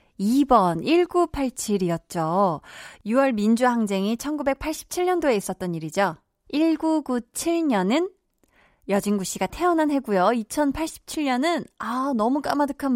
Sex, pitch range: female, 195-275 Hz